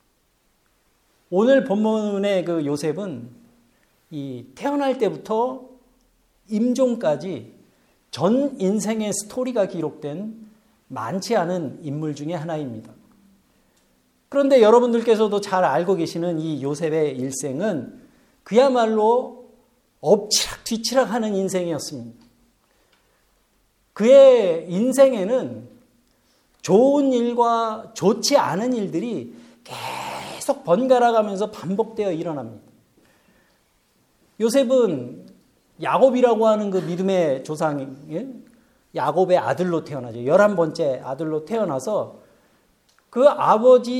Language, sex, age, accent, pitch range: Korean, male, 50-69, native, 170-245 Hz